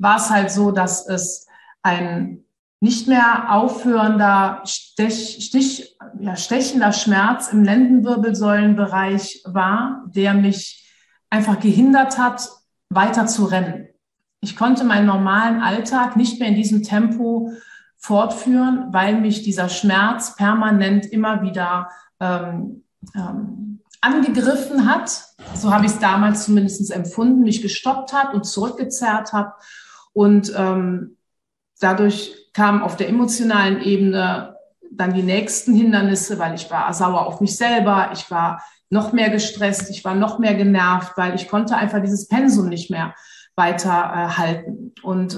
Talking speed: 130 wpm